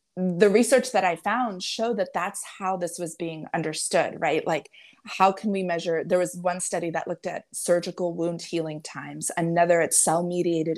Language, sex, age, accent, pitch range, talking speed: English, female, 30-49, American, 170-215 Hz, 185 wpm